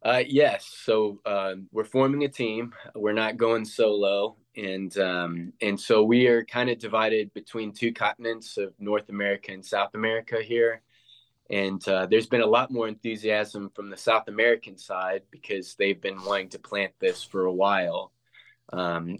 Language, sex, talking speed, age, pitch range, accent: English, male, 175 wpm, 20-39, 95-115 Hz, American